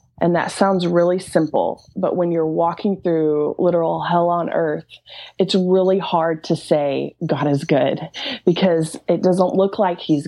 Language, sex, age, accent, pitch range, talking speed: English, female, 20-39, American, 160-185 Hz, 165 wpm